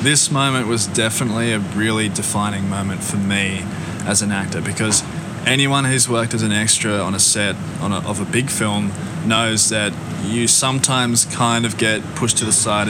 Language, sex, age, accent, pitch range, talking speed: English, male, 20-39, Australian, 100-115 Hz, 185 wpm